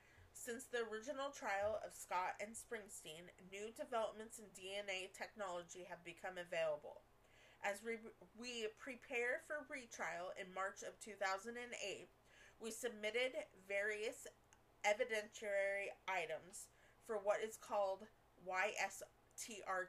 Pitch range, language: 190-230 Hz, English